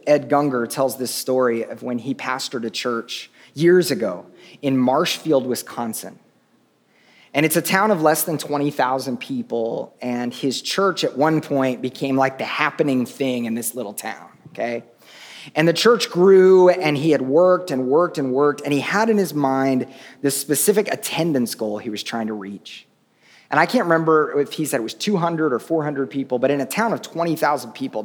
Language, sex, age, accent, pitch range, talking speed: English, male, 30-49, American, 130-170 Hz, 190 wpm